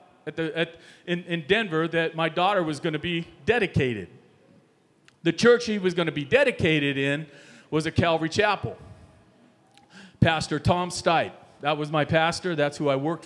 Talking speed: 170 wpm